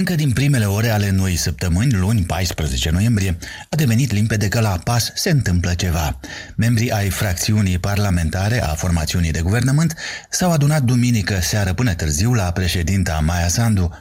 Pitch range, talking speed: 90-120 Hz, 160 wpm